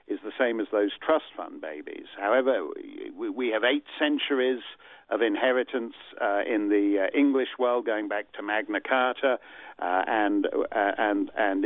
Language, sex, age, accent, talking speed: English, male, 50-69, British, 165 wpm